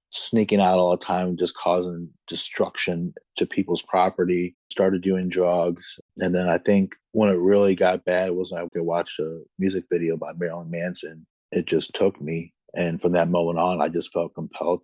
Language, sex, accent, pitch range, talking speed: English, male, American, 85-90 Hz, 185 wpm